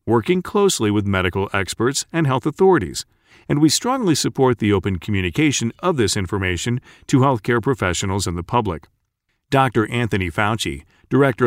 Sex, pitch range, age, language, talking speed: male, 100-135 Hz, 40-59, English, 145 wpm